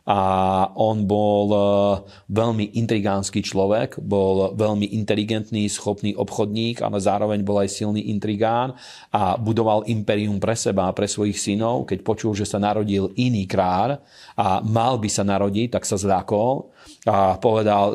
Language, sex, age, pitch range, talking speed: Slovak, male, 40-59, 100-110 Hz, 135 wpm